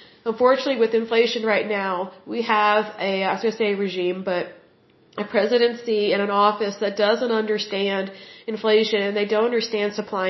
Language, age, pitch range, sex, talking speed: Hindi, 40-59, 200-235 Hz, female, 170 wpm